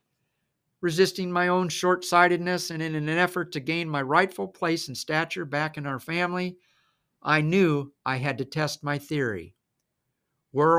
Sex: male